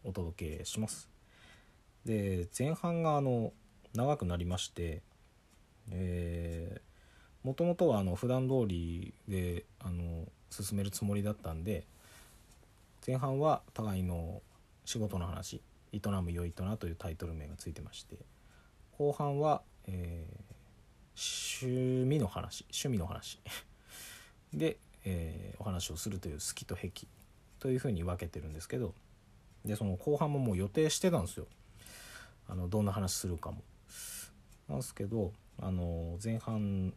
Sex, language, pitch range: male, Japanese, 90-110 Hz